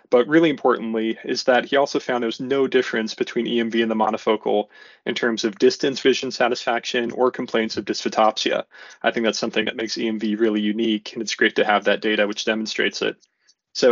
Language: English